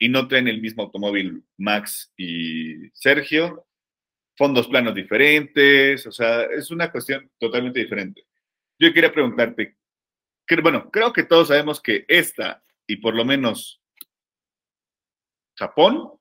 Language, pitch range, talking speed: Spanish, 115-150 Hz, 125 wpm